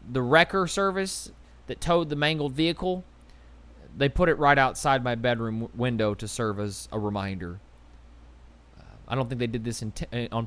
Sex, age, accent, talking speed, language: male, 20-39, American, 165 wpm, English